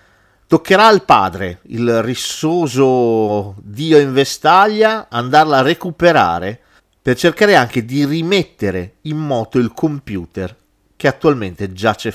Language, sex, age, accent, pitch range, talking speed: Italian, male, 40-59, native, 110-160 Hz, 115 wpm